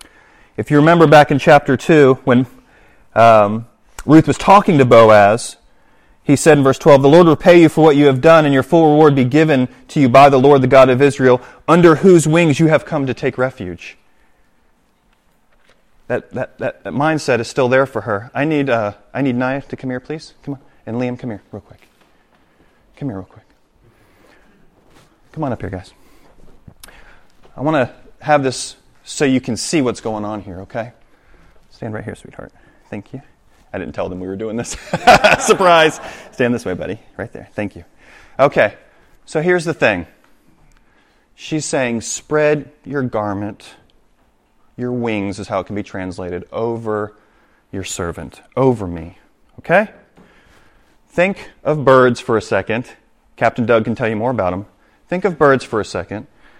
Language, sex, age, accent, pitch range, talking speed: English, male, 30-49, American, 110-150 Hz, 180 wpm